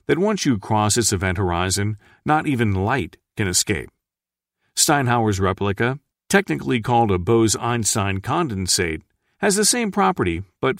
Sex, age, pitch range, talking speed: male, 50-69, 95-135 Hz, 140 wpm